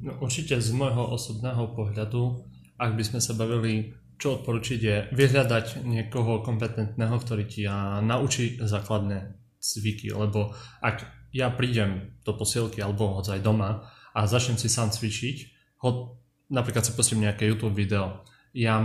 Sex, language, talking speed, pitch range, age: male, Slovak, 145 wpm, 110-125 Hz, 20-39